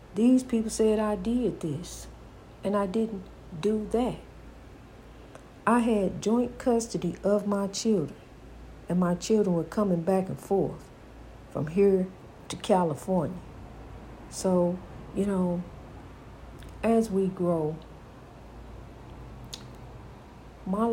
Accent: American